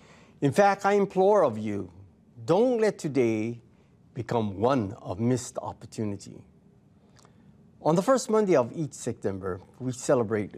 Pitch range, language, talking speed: 115-170 Hz, English, 130 wpm